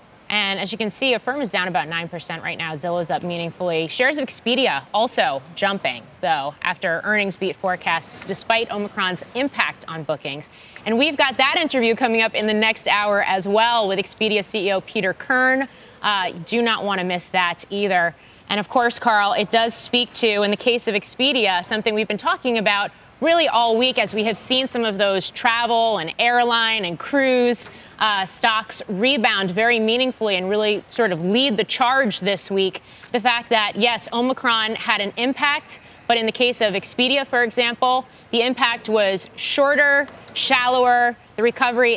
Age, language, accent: 20-39, English, American